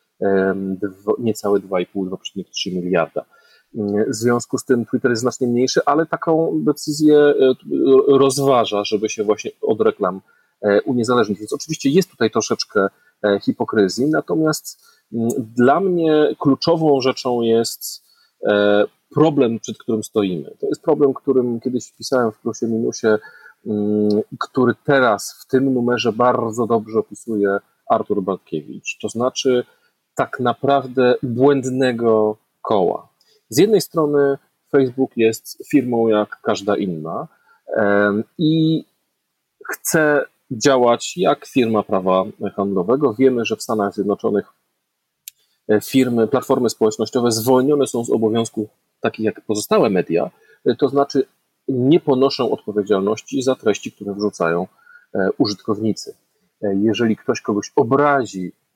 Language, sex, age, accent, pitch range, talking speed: Polish, male, 40-59, native, 105-140 Hz, 110 wpm